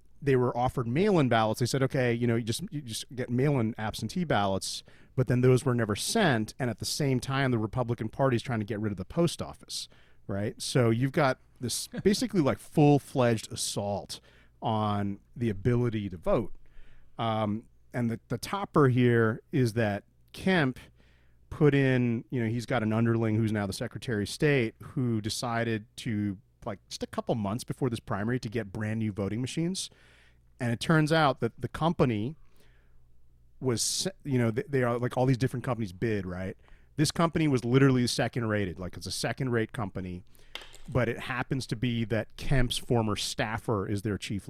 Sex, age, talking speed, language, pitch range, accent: male, 40-59, 185 wpm, English, 100-130 Hz, American